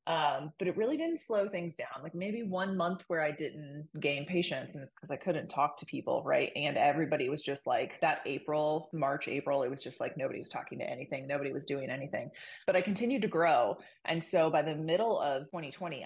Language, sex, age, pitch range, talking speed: English, female, 20-39, 150-195 Hz, 225 wpm